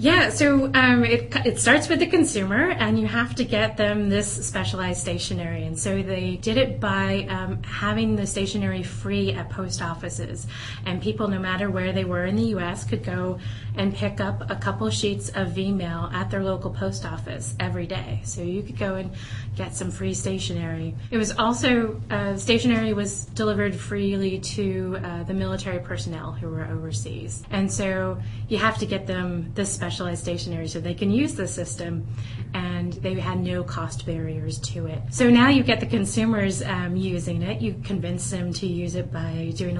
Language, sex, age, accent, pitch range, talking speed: English, female, 30-49, American, 100-120 Hz, 190 wpm